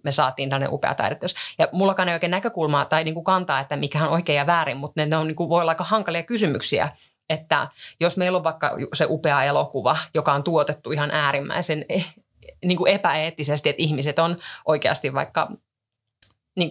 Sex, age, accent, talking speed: female, 30-49, native, 190 wpm